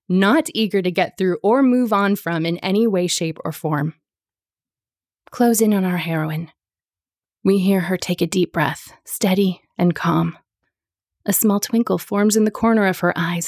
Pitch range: 165-200 Hz